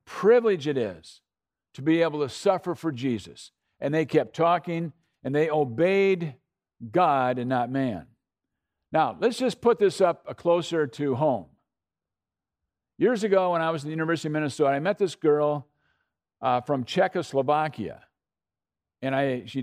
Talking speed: 155 wpm